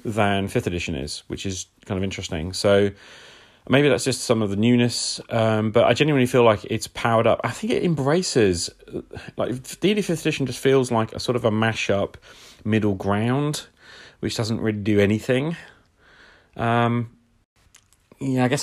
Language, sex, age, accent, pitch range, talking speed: English, male, 30-49, British, 95-120 Hz, 170 wpm